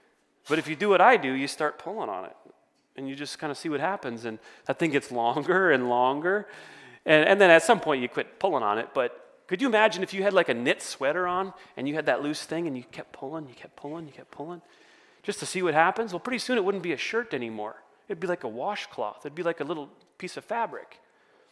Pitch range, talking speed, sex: 145-205 Hz, 260 wpm, male